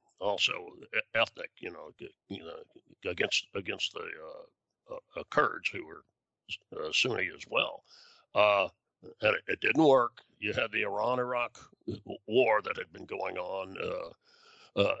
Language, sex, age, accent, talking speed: English, male, 60-79, American, 140 wpm